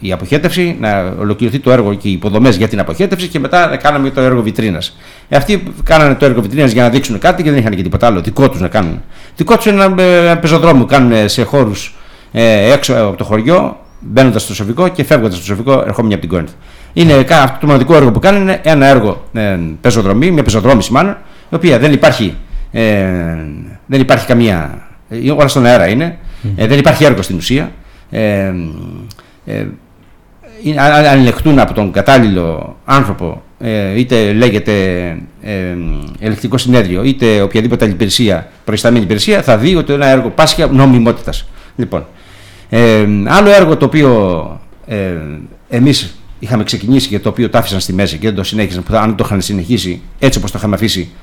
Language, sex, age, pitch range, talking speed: Greek, male, 60-79, 100-135 Hz, 180 wpm